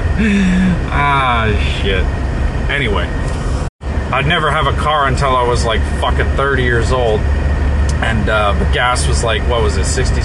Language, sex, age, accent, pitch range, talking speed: English, male, 30-49, American, 70-85 Hz, 150 wpm